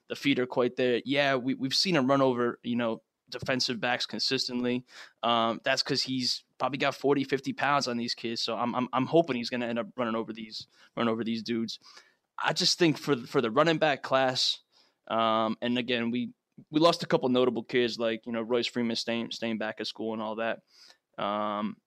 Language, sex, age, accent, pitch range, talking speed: English, male, 20-39, American, 115-135 Hz, 215 wpm